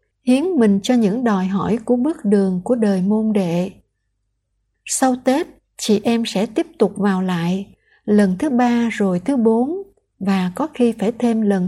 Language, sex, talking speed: Vietnamese, female, 175 wpm